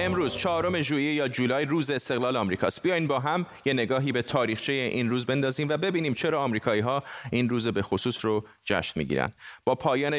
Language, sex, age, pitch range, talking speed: Persian, male, 30-49, 115-145 Hz, 190 wpm